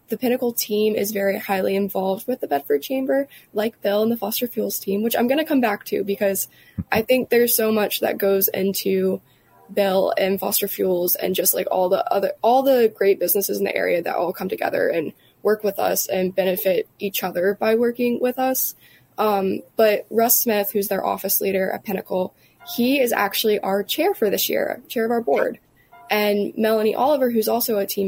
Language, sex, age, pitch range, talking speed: English, female, 20-39, 195-235 Hz, 205 wpm